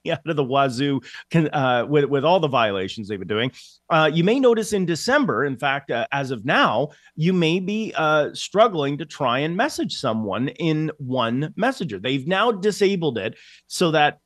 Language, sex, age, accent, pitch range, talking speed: English, male, 30-49, American, 135-175 Hz, 190 wpm